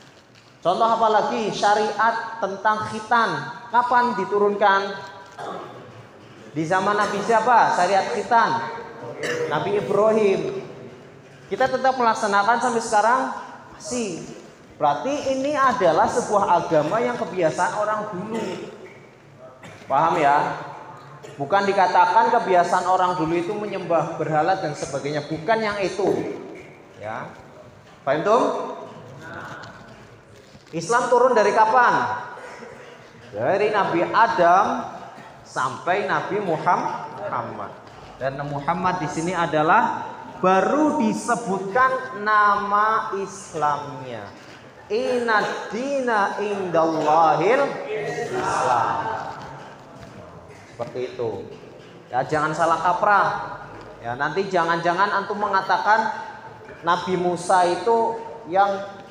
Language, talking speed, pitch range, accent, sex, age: Indonesian, 85 wpm, 165-220 Hz, native, male, 20-39